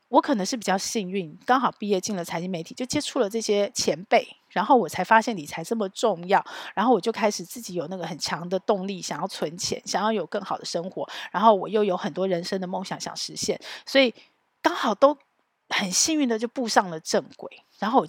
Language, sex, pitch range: Chinese, female, 180-225 Hz